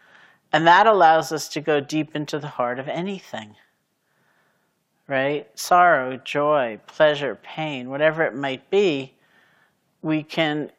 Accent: American